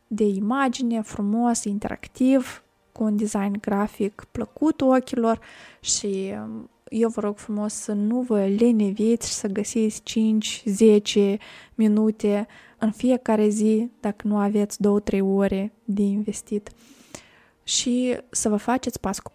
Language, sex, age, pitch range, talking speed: Romanian, female, 20-39, 205-245 Hz, 120 wpm